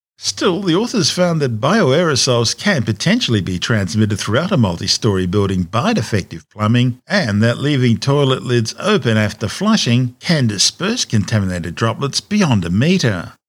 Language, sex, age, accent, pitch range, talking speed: English, male, 50-69, Australian, 105-140 Hz, 140 wpm